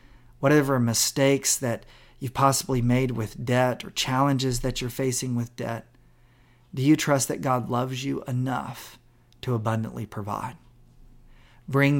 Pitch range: 115-130 Hz